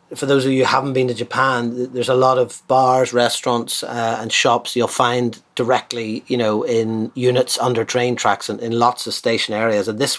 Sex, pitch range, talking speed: male, 115-140 Hz, 210 wpm